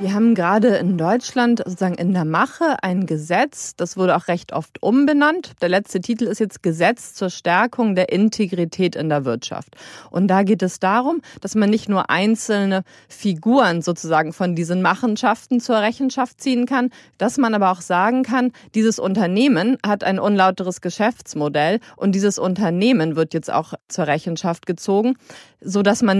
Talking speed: 165 wpm